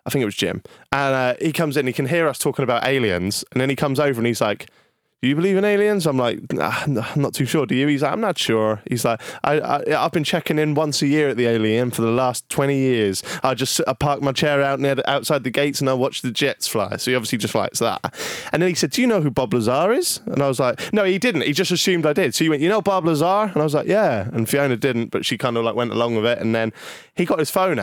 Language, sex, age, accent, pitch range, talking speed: English, male, 20-39, British, 120-160 Hz, 305 wpm